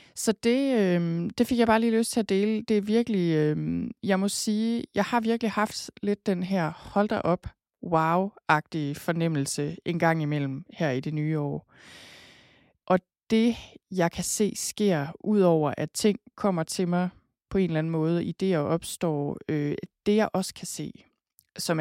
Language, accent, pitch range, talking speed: Danish, native, 155-200 Hz, 180 wpm